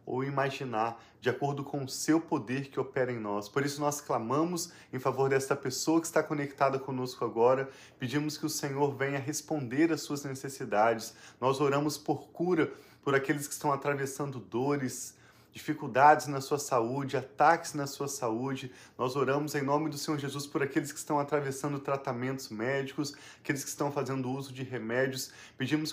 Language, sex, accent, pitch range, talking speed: Portuguese, male, Brazilian, 130-150 Hz, 170 wpm